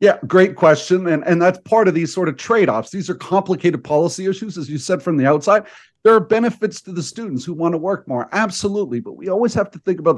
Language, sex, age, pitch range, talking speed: English, male, 50-69, 150-195 Hz, 250 wpm